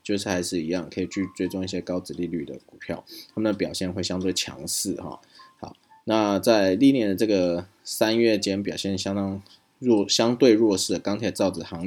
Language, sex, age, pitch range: Chinese, male, 20-39, 85-100 Hz